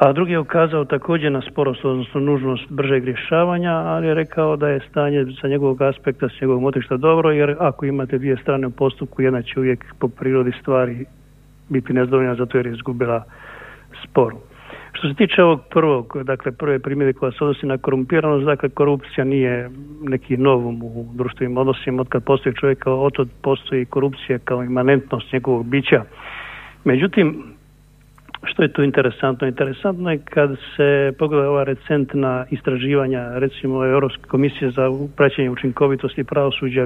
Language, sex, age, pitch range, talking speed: Croatian, male, 50-69, 130-145 Hz, 160 wpm